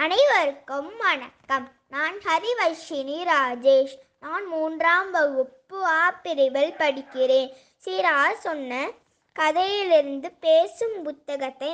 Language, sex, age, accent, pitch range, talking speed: Tamil, female, 20-39, native, 270-330 Hz, 80 wpm